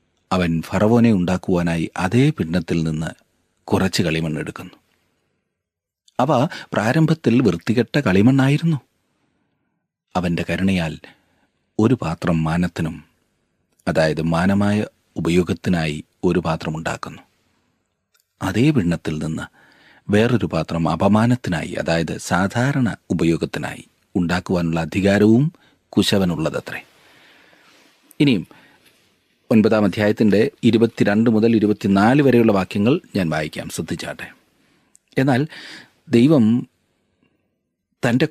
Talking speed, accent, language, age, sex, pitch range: 80 wpm, native, Malayalam, 40-59, male, 85-115 Hz